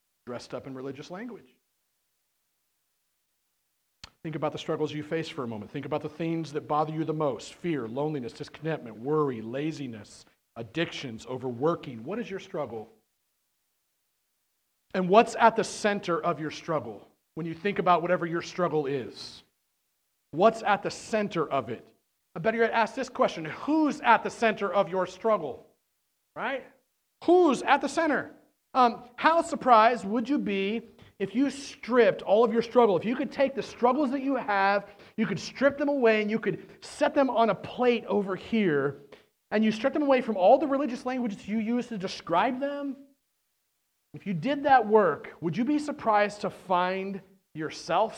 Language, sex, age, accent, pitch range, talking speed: English, male, 40-59, American, 160-235 Hz, 170 wpm